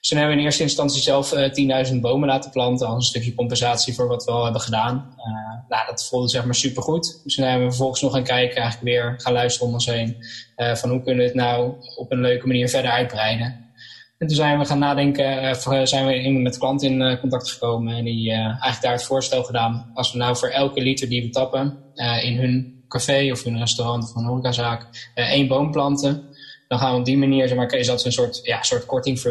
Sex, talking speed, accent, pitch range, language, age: male, 240 wpm, Dutch, 120-130 Hz, Dutch, 10-29